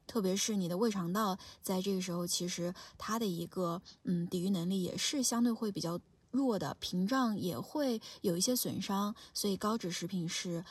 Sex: female